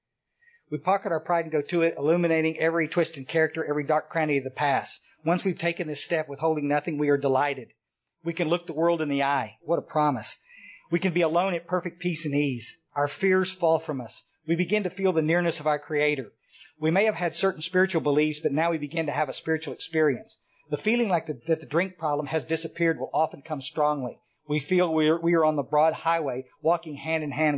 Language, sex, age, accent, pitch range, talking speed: English, male, 50-69, American, 150-175 Hz, 230 wpm